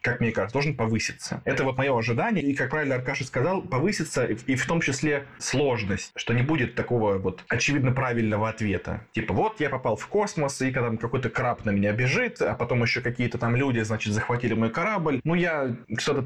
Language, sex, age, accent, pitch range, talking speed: Russian, male, 20-39, native, 105-140 Hz, 205 wpm